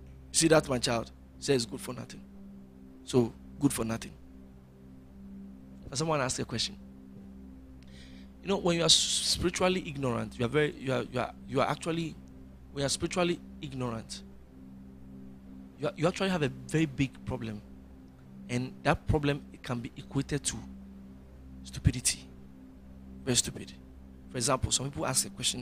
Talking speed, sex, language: 150 wpm, male, English